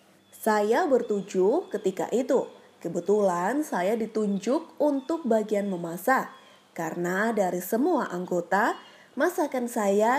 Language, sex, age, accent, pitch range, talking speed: Indonesian, female, 20-39, native, 195-285 Hz, 95 wpm